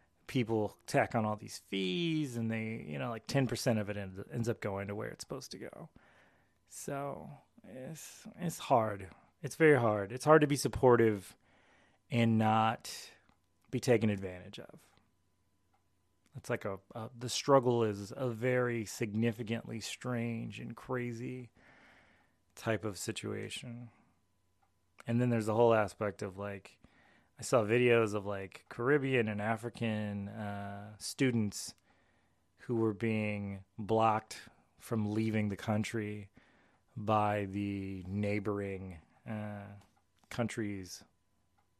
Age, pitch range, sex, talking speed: 20-39, 100-125 Hz, male, 130 wpm